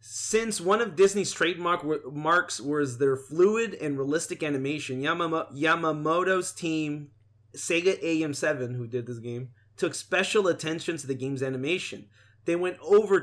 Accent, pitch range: American, 140-165 Hz